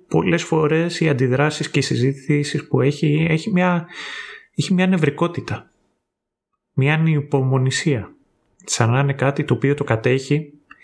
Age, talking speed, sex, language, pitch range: 30-49, 135 wpm, male, Greek, 120-150 Hz